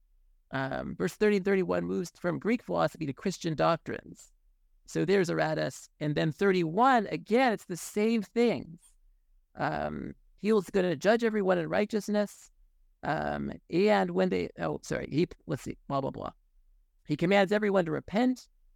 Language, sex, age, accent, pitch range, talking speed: English, male, 50-69, American, 160-220 Hz, 165 wpm